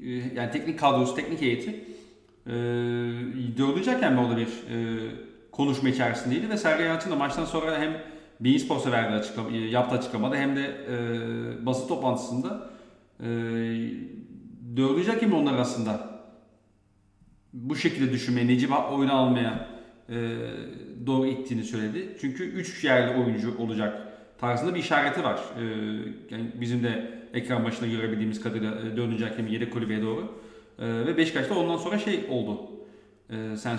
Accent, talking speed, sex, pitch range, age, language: native, 135 wpm, male, 115-140 Hz, 40-59, Turkish